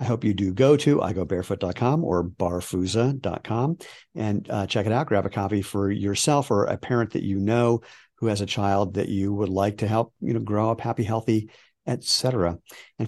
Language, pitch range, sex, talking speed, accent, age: English, 100-125 Hz, male, 200 wpm, American, 50-69